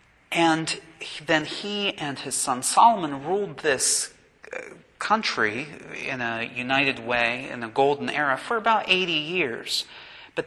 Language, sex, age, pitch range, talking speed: English, male, 40-59, 130-170 Hz, 130 wpm